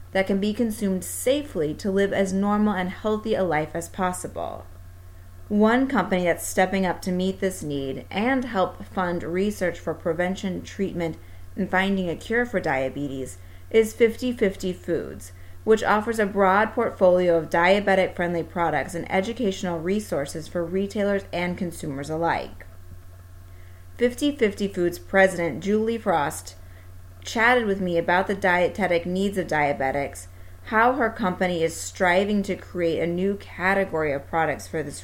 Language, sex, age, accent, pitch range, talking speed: English, female, 30-49, American, 145-200 Hz, 145 wpm